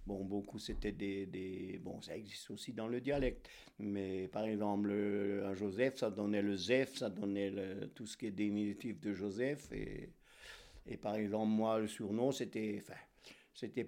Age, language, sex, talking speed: 50-69, French, male, 180 wpm